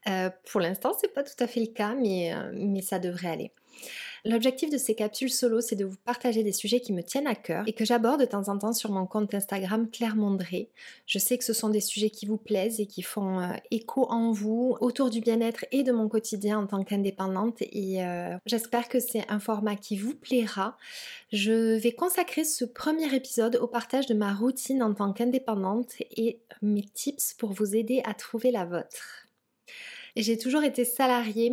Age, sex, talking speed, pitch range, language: 20-39, female, 210 wpm, 210-250 Hz, French